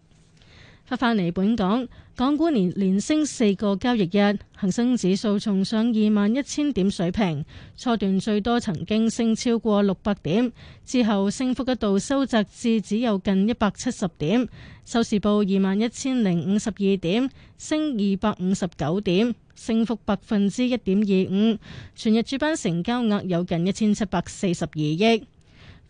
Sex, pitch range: female, 195-235 Hz